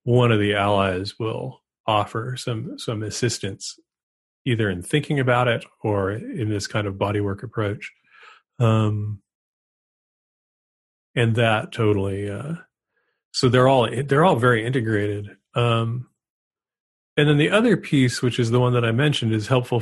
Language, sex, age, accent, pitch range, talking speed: English, male, 40-59, American, 105-130 Hz, 145 wpm